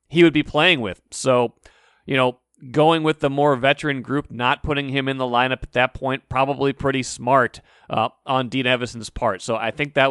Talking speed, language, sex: 210 wpm, English, male